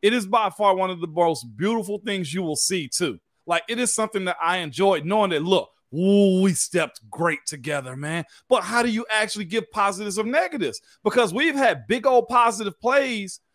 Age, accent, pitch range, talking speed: 40-59, American, 180-230 Hz, 200 wpm